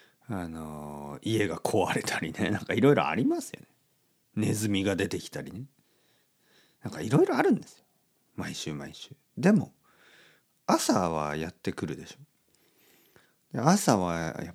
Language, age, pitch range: Japanese, 40-59, 90-140 Hz